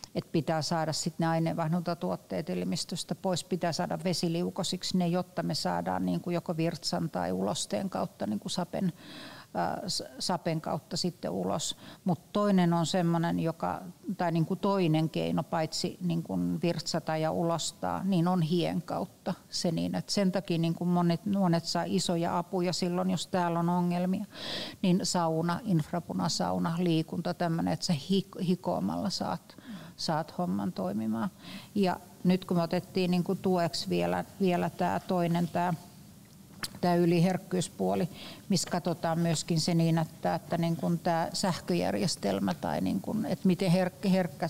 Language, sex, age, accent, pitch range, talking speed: Finnish, female, 60-79, native, 165-185 Hz, 130 wpm